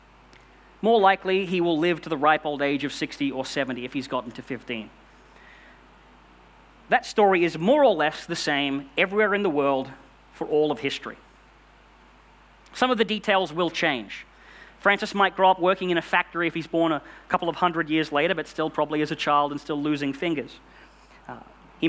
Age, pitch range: 30-49, 140-185 Hz